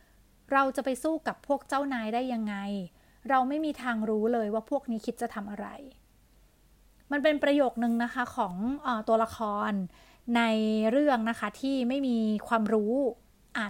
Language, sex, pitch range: Thai, female, 225-270 Hz